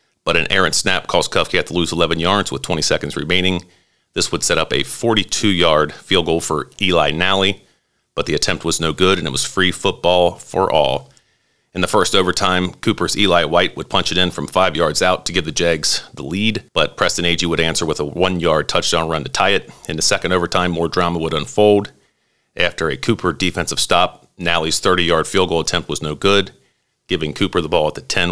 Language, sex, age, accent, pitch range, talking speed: English, male, 40-59, American, 80-95 Hz, 210 wpm